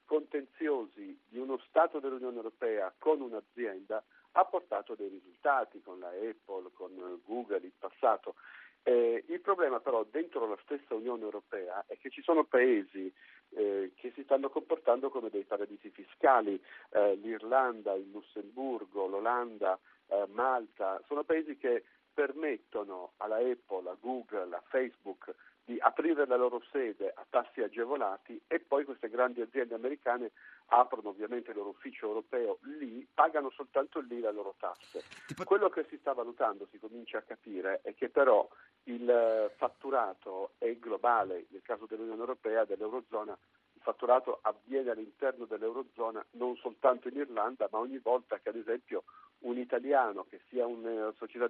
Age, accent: 50-69, native